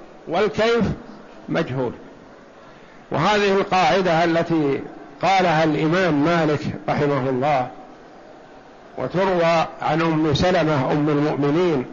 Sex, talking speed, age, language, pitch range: male, 80 wpm, 60-79, Arabic, 165-205 Hz